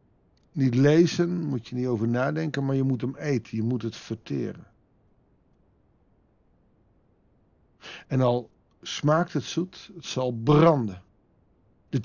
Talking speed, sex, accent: 125 wpm, male, Dutch